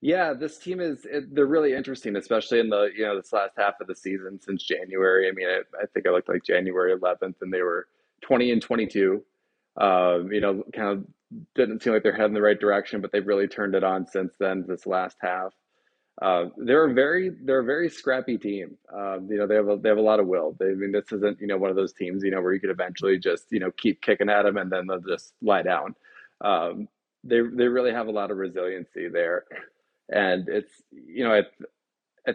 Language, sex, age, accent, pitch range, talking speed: English, male, 20-39, American, 95-120 Hz, 230 wpm